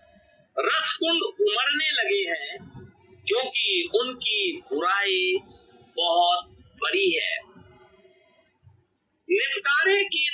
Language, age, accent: Hindi, 50-69, native